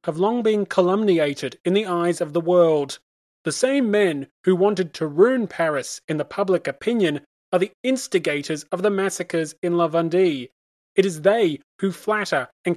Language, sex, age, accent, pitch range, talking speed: English, male, 30-49, British, 170-200 Hz, 170 wpm